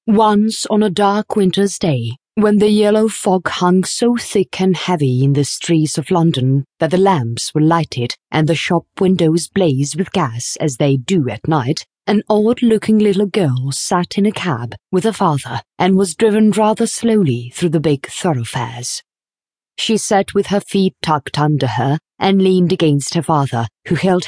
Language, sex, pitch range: English, female, 140-200 Hz